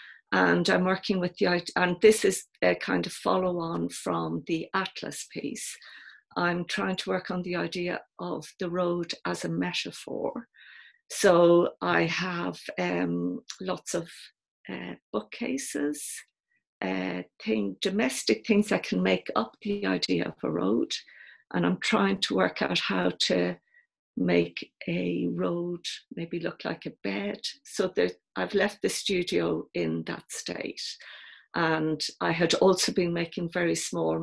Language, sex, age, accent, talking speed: English, female, 50-69, British, 145 wpm